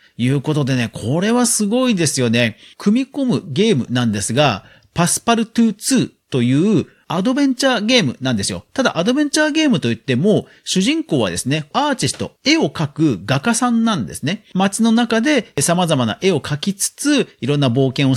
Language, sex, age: Japanese, male, 40-59